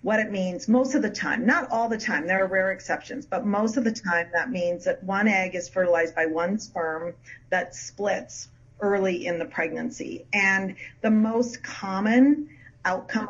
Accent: American